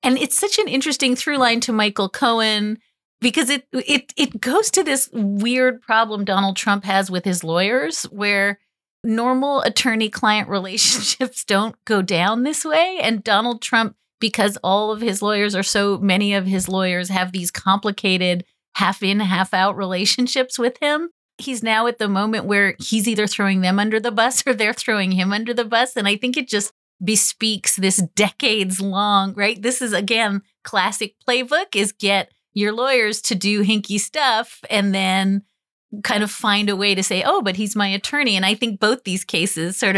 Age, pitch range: 30-49, 195-240 Hz